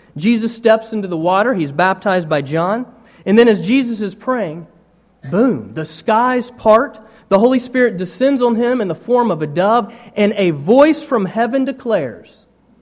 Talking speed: 175 wpm